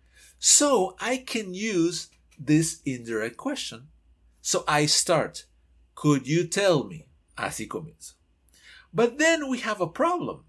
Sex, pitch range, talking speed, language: male, 145-205 Hz, 125 wpm, English